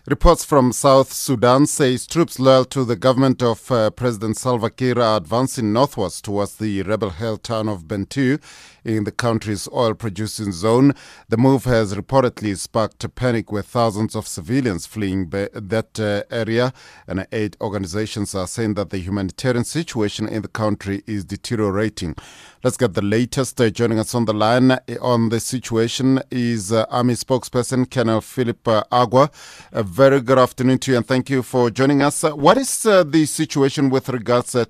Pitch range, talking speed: 100-130 Hz, 175 wpm